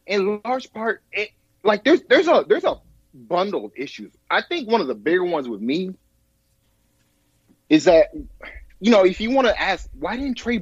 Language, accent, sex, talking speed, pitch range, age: English, American, male, 190 wpm, 125-210 Hz, 30-49